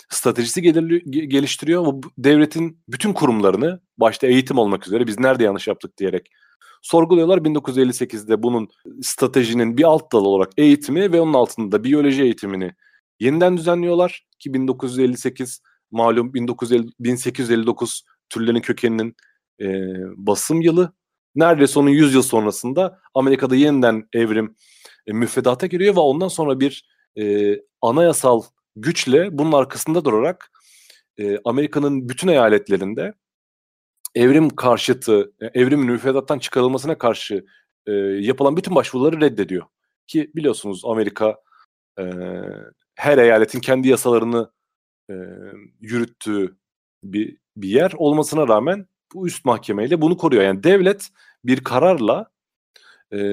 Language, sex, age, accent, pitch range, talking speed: Turkish, male, 40-59, native, 115-155 Hz, 115 wpm